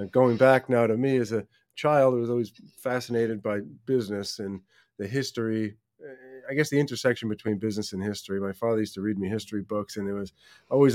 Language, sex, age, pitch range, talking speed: English, male, 30-49, 105-120 Hz, 205 wpm